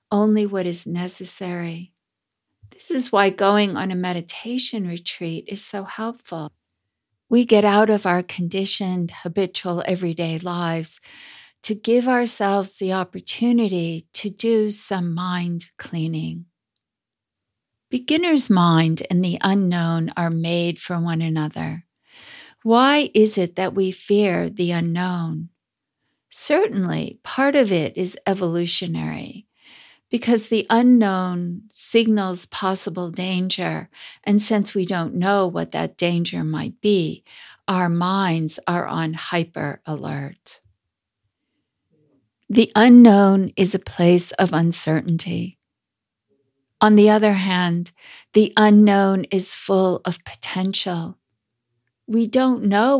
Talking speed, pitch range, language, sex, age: 115 wpm, 165-210 Hz, English, female, 50-69